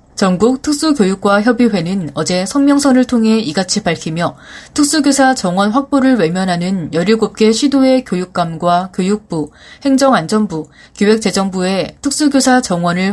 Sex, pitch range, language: female, 185-260 Hz, Korean